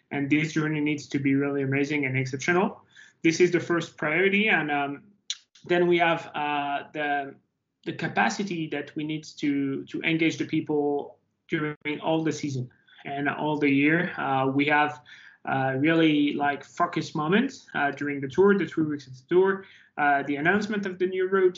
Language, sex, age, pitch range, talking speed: English, male, 20-39, 145-170 Hz, 180 wpm